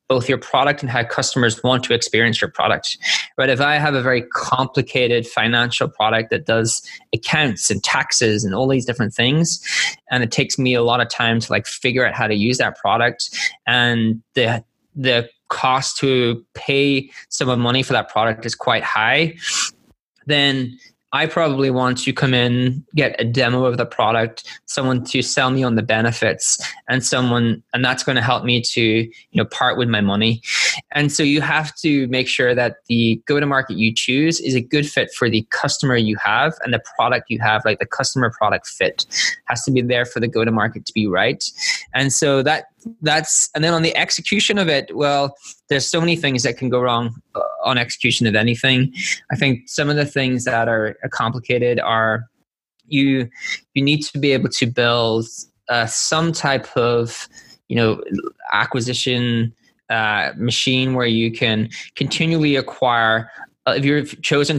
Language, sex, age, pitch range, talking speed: English, male, 20-39, 115-140 Hz, 190 wpm